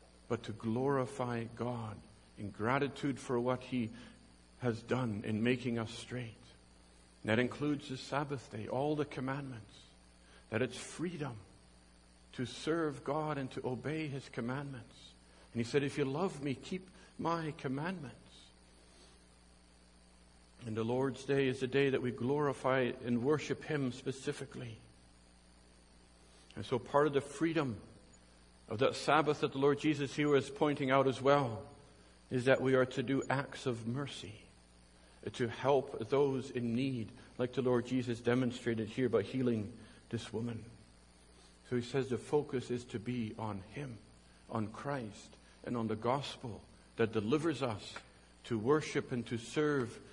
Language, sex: English, male